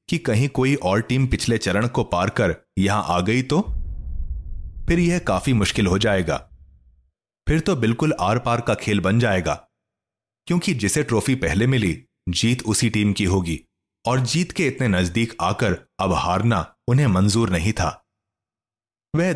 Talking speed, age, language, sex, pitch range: 160 wpm, 30-49, Hindi, male, 95-125 Hz